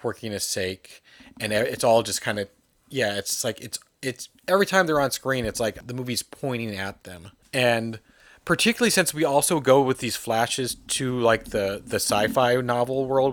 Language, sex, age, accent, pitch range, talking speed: English, male, 30-49, American, 100-130 Hz, 190 wpm